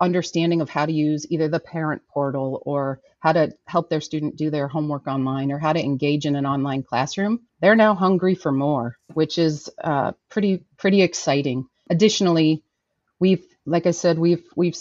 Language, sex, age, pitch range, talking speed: English, female, 30-49, 150-190 Hz, 180 wpm